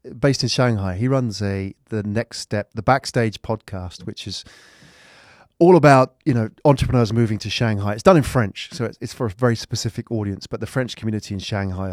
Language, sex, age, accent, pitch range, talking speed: English, male, 30-49, British, 105-135 Hz, 195 wpm